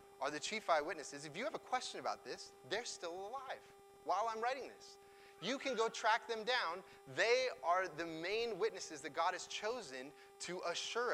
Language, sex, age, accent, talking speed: English, male, 30-49, American, 190 wpm